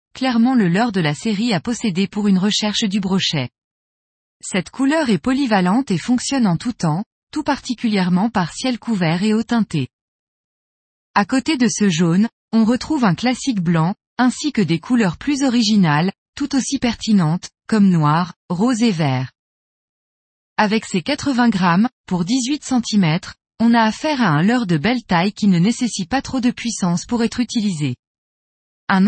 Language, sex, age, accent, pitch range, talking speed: French, female, 20-39, French, 175-245 Hz, 165 wpm